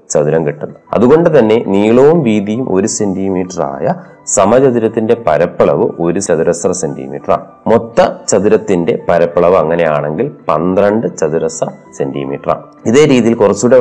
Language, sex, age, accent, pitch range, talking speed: Malayalam, male, 30-49, native, 85-115 Hz, 105 wpm